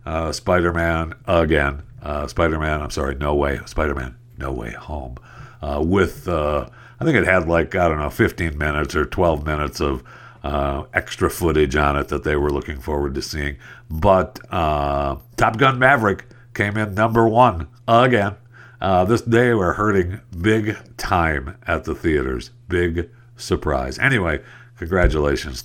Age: 60-79